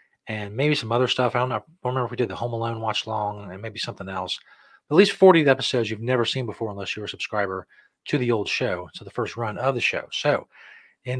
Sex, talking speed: male, 250 wpm